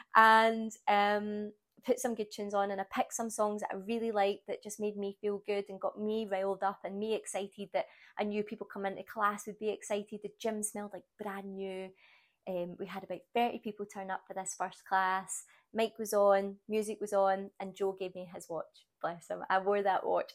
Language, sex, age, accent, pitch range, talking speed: English, female, 20-39, British, 190-220 Hz, 225 wpm